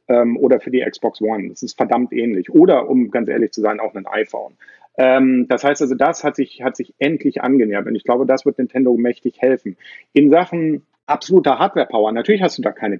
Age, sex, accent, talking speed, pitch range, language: 40-59, male, German, 210 wpm, 120-155 Hz, German